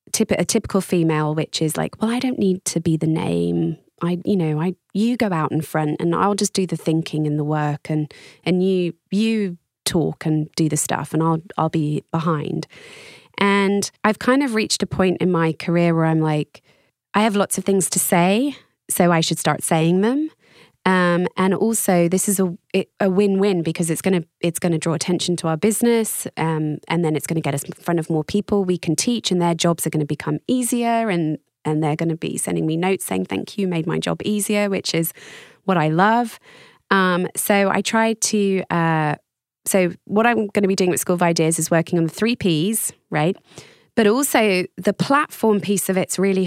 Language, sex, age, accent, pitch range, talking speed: English, female, 20-39, British, 160-200 Hz, 220 wpm